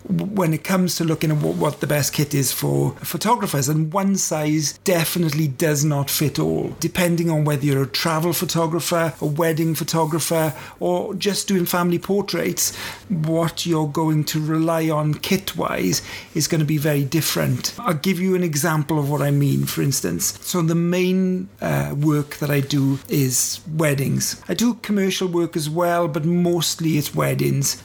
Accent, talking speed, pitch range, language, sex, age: British, 170 wpm, 150-175 Hz, English, male, 40-59